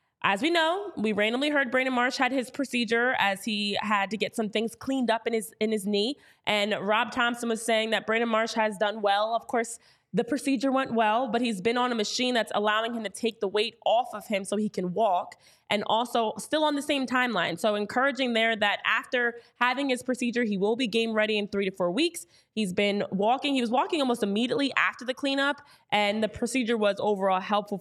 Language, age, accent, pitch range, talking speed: English, 20-39, American, 210-250 Hz, 225 wpm